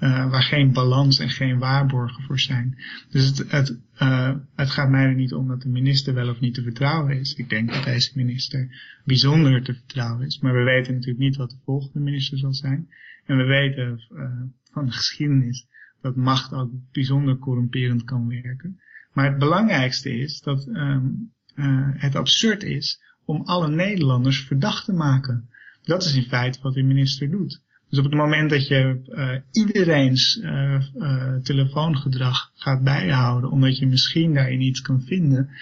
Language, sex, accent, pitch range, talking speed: Dutch, male, Dutch, 130-145 Hz, 180 wpm